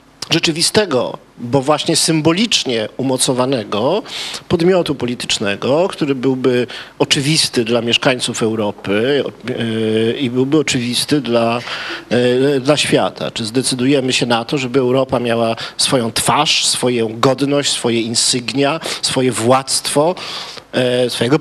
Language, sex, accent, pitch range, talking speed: Polish, male, native, 120-155 Hz, 100 wpm